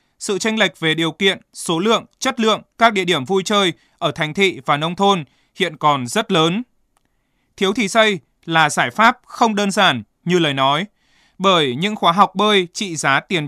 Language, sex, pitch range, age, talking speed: Vietnamese, male, 160-210 Hz, 20-39, 200 wpm